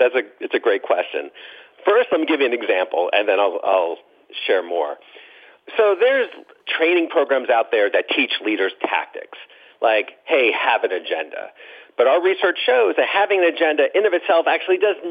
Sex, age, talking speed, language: male, 40-59, 185 wpm, English